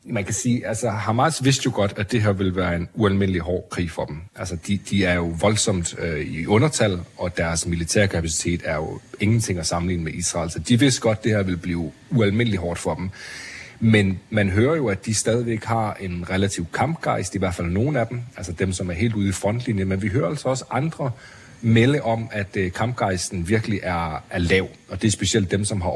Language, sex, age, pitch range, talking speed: Danish, male, 30-49, 90-110 Hz, 225 wpm